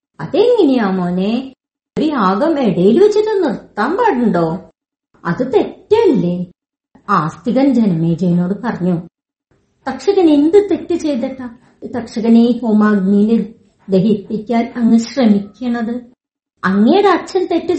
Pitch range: 200-300 Hz